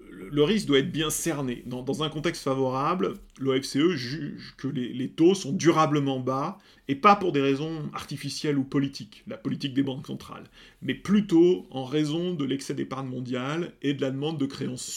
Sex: male